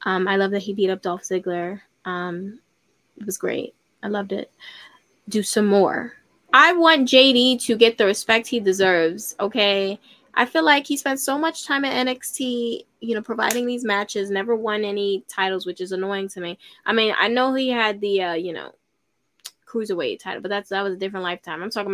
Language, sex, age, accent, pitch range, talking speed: English, female, 10-29, American, 195-235 Hz, 200 wpm